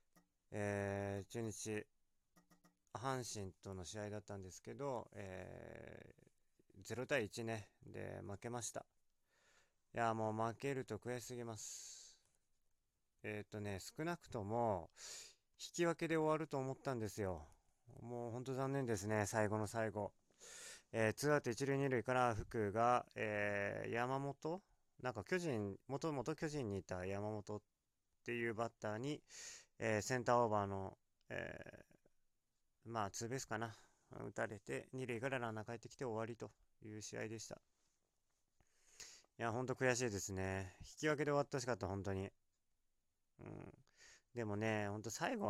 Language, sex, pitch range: Japanese, male, 105-130 Hz